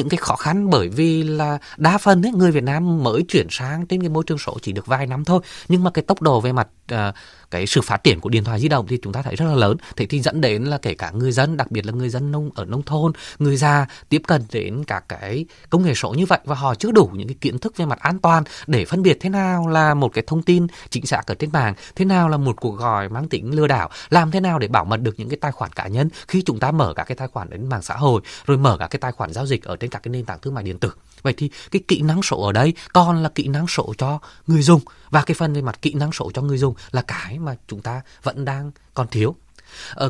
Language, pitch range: Vietnamese, 125-165 Hz